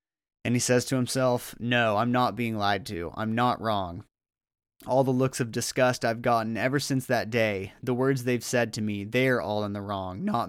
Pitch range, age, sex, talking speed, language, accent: 110-130 Hz, 30-49, male, 210 wpm, English, American